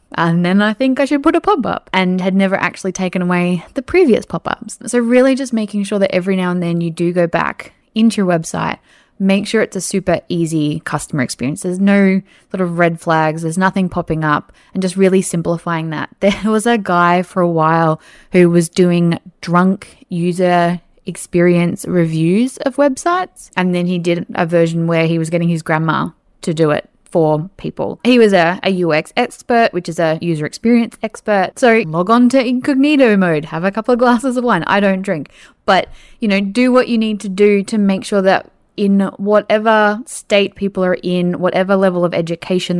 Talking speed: 200 wpm